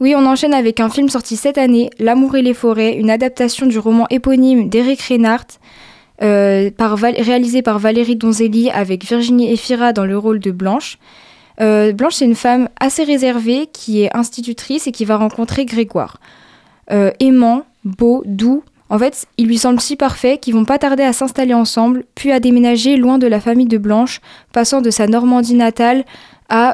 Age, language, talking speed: 10-29, French, 180 wpm